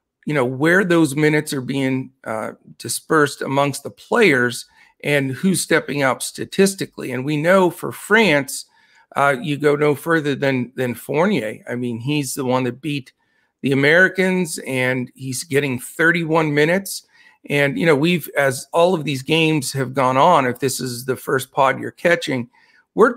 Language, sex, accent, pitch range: English, male, American, 135-170 Hz